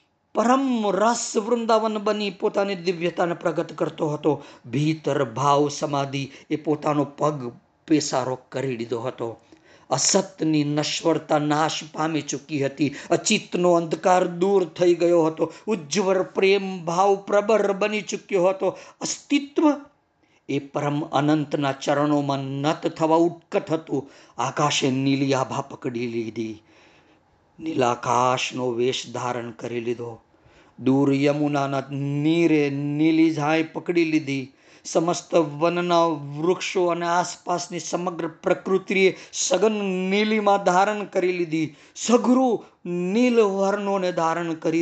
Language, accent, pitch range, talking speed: Gujarati, native, 140-190 Hz, 85 wpm